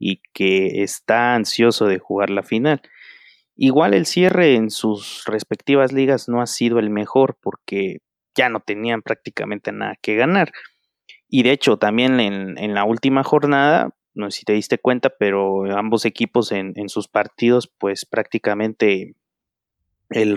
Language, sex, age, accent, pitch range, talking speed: Spanish, male, 30-49, Mexican, 105-140 Hz, 155 wpm